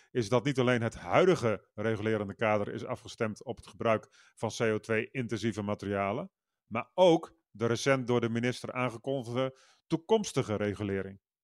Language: Dutch